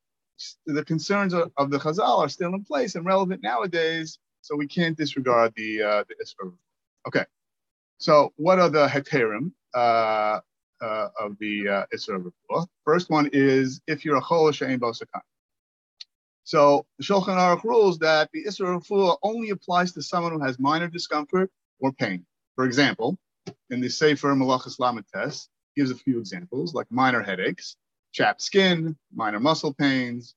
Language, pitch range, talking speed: English, 125-170 Hz, 155 wpm